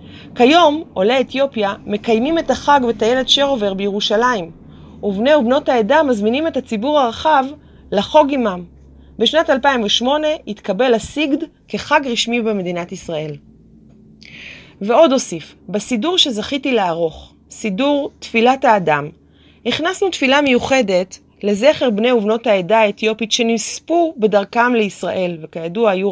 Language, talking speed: Hebrew, 110 wpm